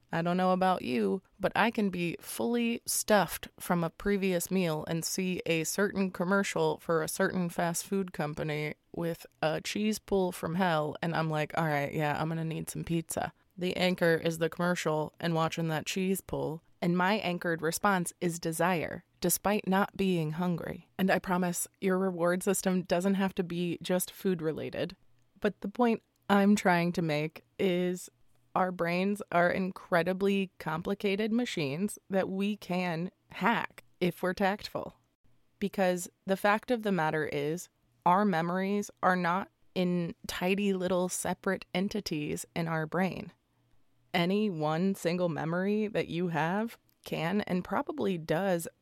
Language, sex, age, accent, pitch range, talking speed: English, female, 20-39, American, 165-195 Hz, 155 wpm